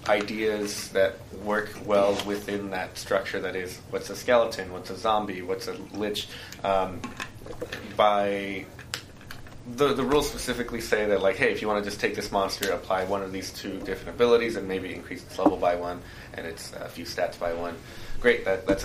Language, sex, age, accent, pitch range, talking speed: English, male, 20-39, American, 95-110 Hz, 195 wpm